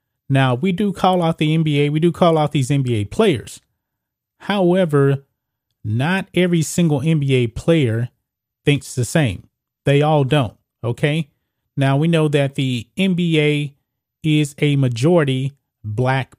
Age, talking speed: 30-49, 135 wpm